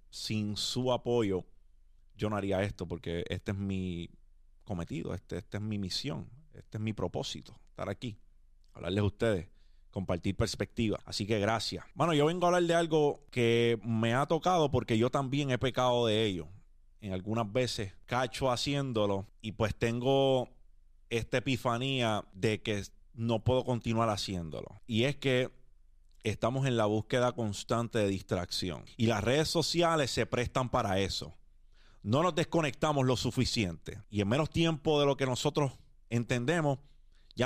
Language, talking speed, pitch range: Spanish, 155 wpm, 110-145 Hz